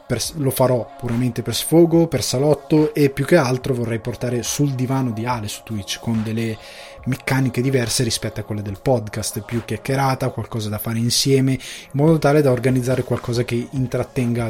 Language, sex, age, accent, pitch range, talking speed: Italian, male, 20-39, native, 115-140 Hz, 175 wpm